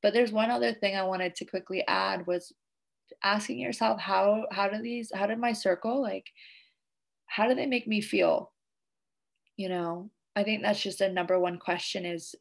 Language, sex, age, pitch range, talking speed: English, female, 20-39, 180-205 Hz, 190 wpm